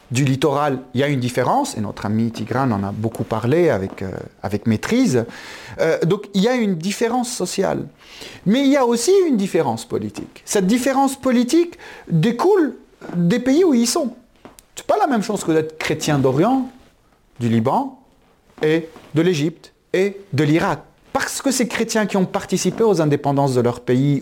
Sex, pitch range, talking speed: male, 135-225 Hz, 185 wpm